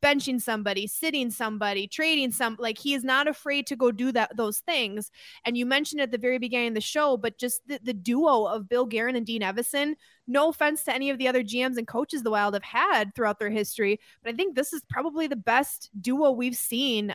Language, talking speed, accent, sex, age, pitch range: English, 230 wpm, American, female, 20-39, 215-255 Hz